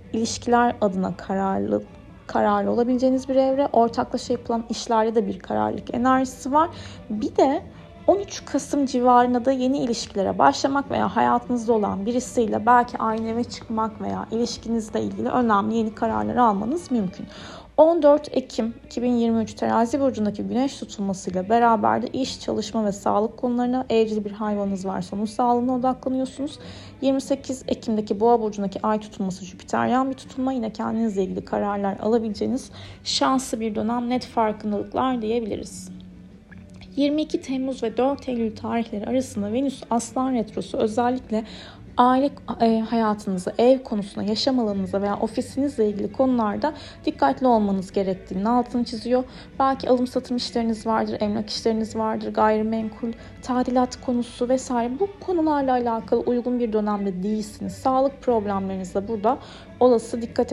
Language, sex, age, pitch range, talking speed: Turkish, female, 30-49, 215-255 Hz, 130 wpm